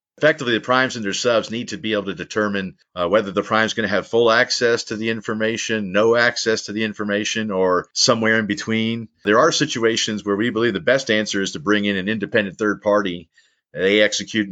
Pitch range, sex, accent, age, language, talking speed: 100-110 Hz, male, American, 50-69, English, 215 wpm